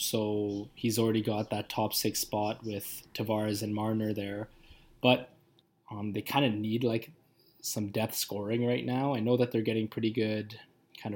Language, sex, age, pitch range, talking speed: English, male, 20-39, 105-120 Hz, 175 wpm